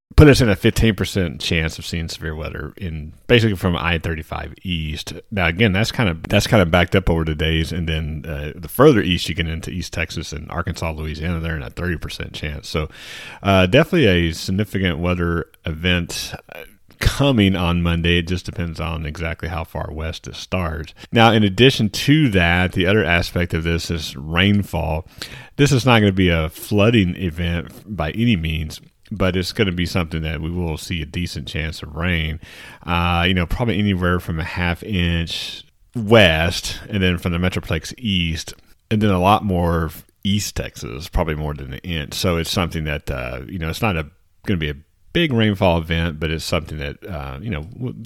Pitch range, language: 80-105 Hz, English